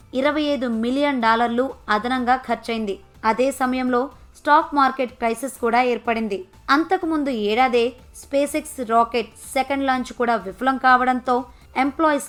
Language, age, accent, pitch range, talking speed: Telugu, 20-39, native, 225-260 Hz, 115 wpm